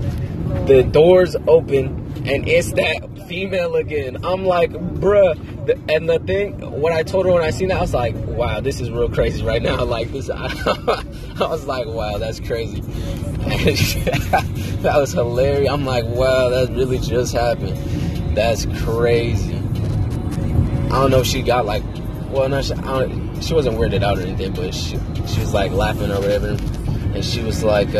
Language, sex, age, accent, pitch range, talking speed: English, male, 20-39, American, 105-130 Hz, 180 wpm